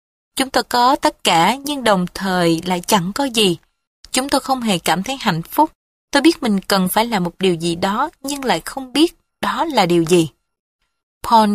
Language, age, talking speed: Vietnamese, 20-39, 205 wpm